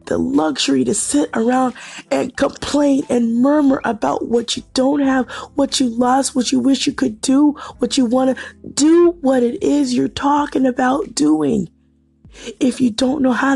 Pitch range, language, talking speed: 215-275 Hz, English, 175 wpm